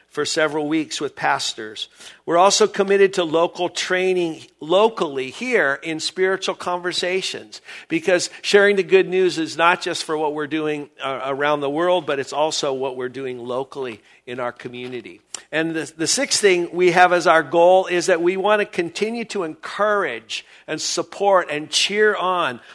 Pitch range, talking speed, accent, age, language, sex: 145-185 Hz, 170 wpm, American, 50-69, English, male